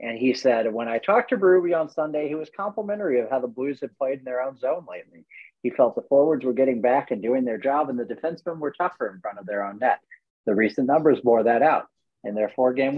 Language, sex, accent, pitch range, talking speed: English, male, American, 120-175 Hz, 255 wpm